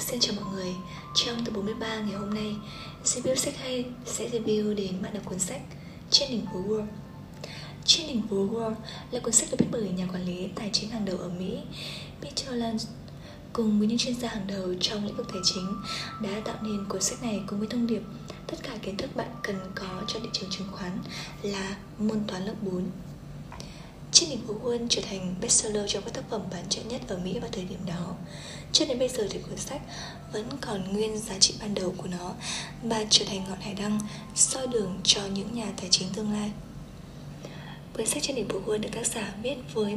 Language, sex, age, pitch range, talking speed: Vietnamese, female, 20-39, 190-225 Hz, 215 wpm